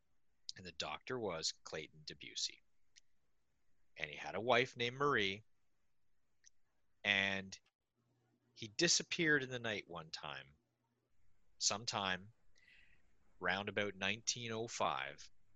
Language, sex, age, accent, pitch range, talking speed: English, male, 40-59, American, 95-120 Hz, 95 wpm